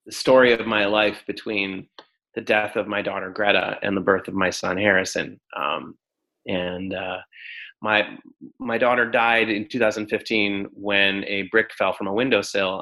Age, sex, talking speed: 20-39, male, 165 wpm